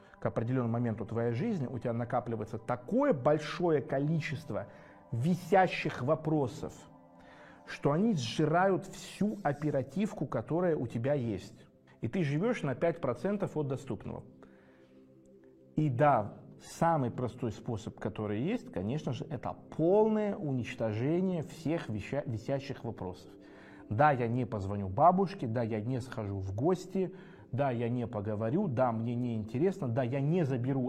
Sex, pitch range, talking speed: male, 120-185 Hz, 130 wpm